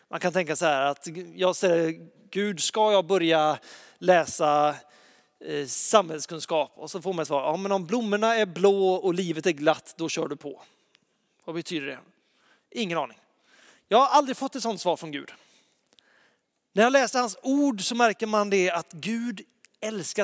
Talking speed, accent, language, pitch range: 170 wpm, native, Swedish, 165-220 Hz